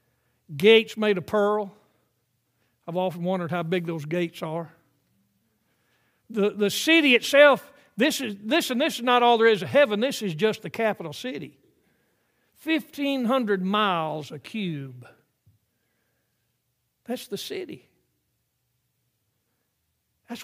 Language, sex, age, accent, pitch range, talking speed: English, male, 60-79, American, 165-235 Hz, 125 wpm